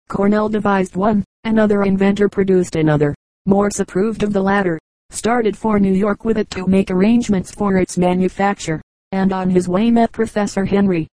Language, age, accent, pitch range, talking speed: English, 40-59, American, 190-210 Hz, 165 wpm